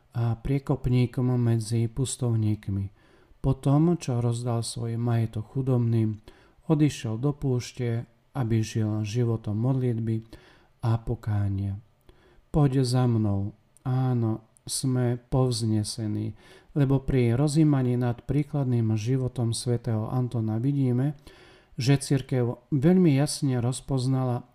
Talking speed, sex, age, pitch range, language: 95 wpm, male, 40-59, 115-140 Hz, Slovak